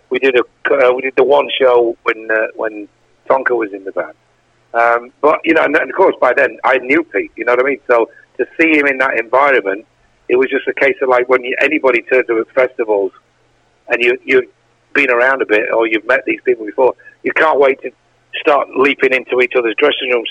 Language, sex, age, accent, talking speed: English, male, 60-79, British, 235 wpm